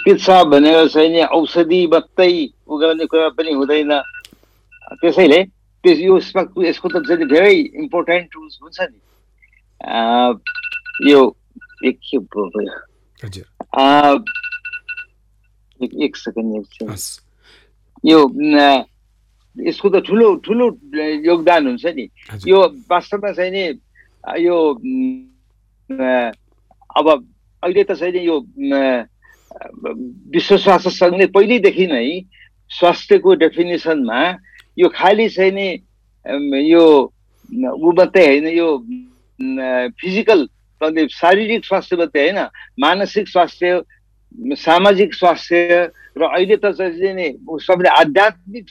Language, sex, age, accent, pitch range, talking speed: English, male, 60-79, Indian, 150-225 Hz, 50 wpm